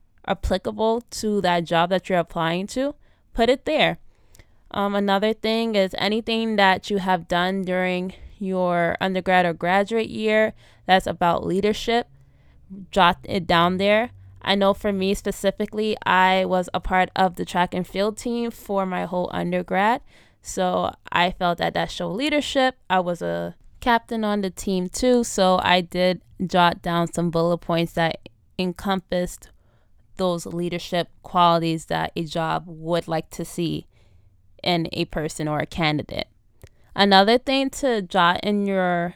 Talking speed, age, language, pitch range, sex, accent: 150 wpm, 20-39, English, 175-215 Hz, female, American